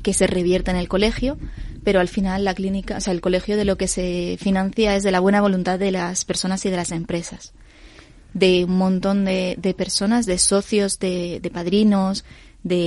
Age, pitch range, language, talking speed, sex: 20-39, 180-200 Hz, Spanish, 205 wpm, female